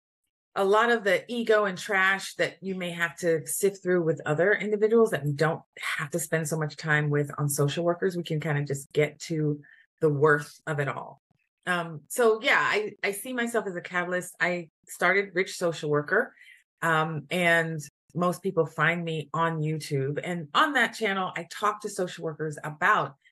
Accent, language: American, English